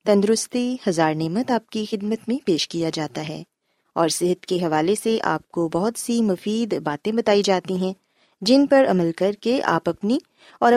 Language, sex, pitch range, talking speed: Urdu, female, 180-255 Hz, 185 wpm